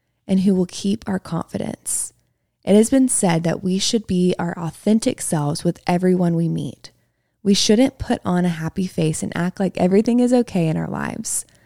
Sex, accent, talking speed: female, American, 190 wpm